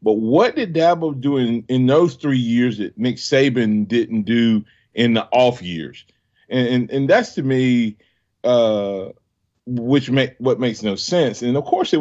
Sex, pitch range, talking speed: male, 110-145 Hz, 180 wpm